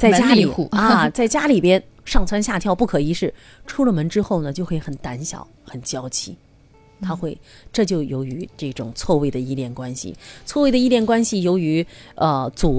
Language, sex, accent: Chinese, female, native